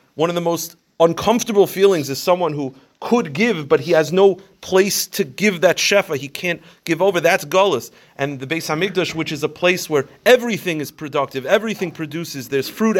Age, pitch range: 30-49, 155-190 Hz